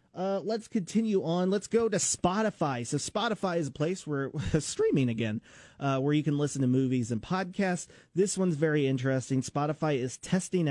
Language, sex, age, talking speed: English, male, 30-49, 180 wpm